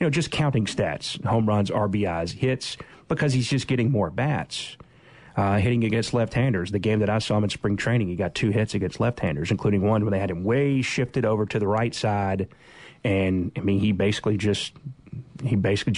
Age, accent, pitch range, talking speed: 30-49, American, 100-125 Hz, 205 wpm